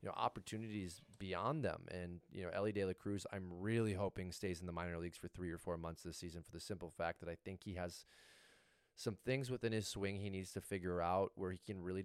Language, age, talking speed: English, 20-39, 250 wpm